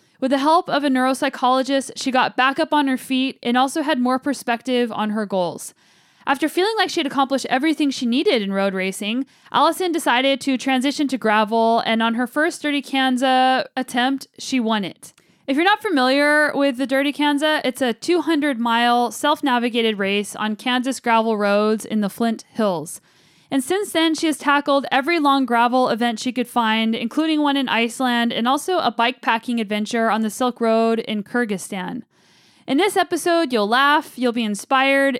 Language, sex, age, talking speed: English, female, 10-29, 180 wpm